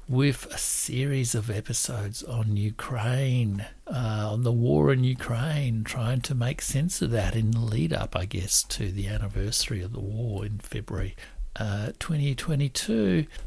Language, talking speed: English, 150 wpm